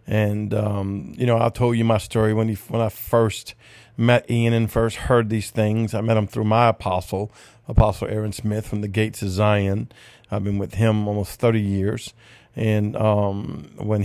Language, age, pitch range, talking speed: English, 40-59, 105-120 Hz, 190 wpm